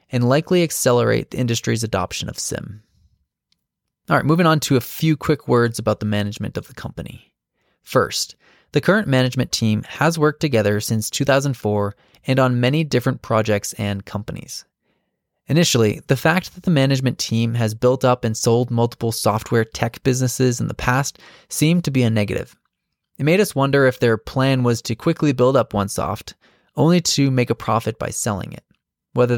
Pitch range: 110-140 Hz